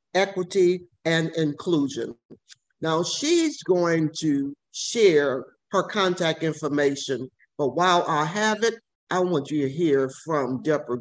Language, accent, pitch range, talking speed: English, American, 155-225 Hz, 125 wpm